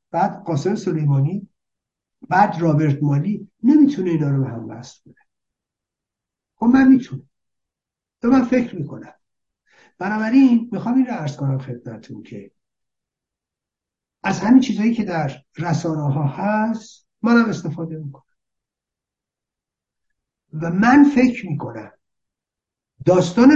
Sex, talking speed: male, 105 wpm